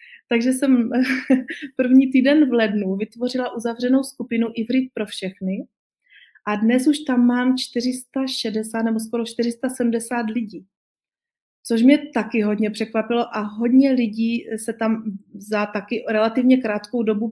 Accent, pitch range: native, 210-240 Hz